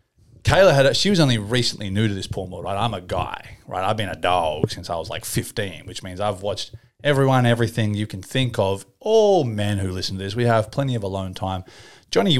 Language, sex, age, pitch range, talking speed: English, male, 30-49, 95-115 Hz, 235 wpm